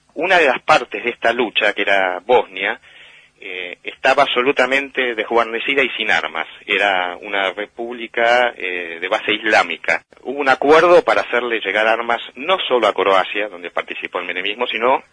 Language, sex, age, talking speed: Spanish, male, 30-49, 160 wpm